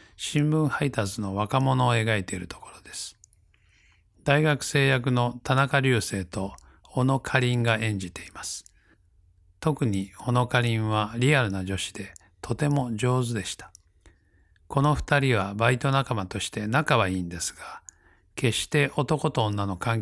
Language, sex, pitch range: Japanese, male, 90-130 Hz